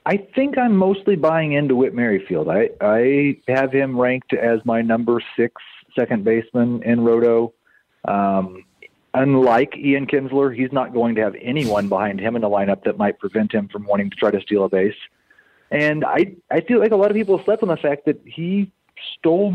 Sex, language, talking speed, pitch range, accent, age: male, English, 200 wpm, 115-170 Hz, American, 30-49